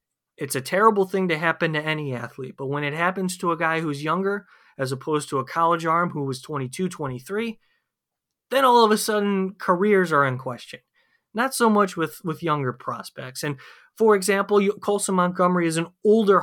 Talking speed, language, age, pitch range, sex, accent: 190 wpm, English, 30-49, 140-185 Hz, male, American